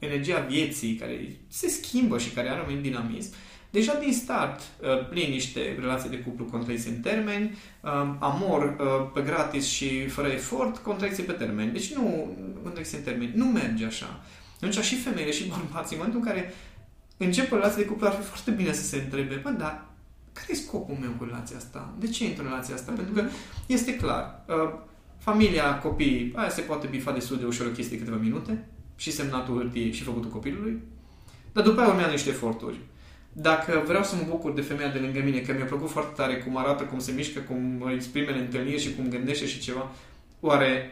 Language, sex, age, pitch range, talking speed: Romanian, male, 20-39, 130-200 Hz, 190 wpm